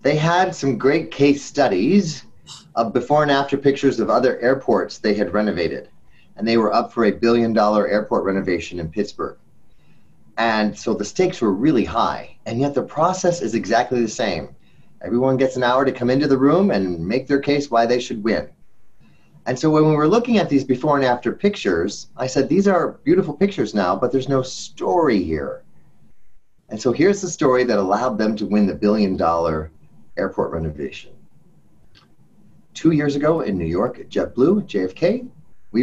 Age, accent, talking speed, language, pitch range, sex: 30-49, American, 185 wpm, English, 105-150 Hz, male